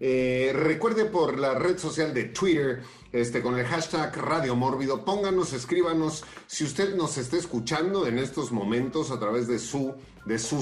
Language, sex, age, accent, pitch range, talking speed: Spanish, male, 40-59, Mexican, 115-135 Hz, 160 wpm